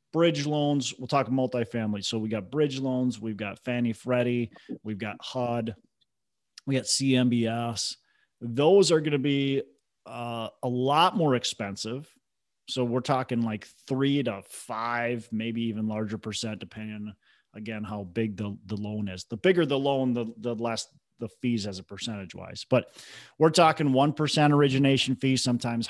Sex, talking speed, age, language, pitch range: male, 160 wpm, 30-49, English, 100-125 Hz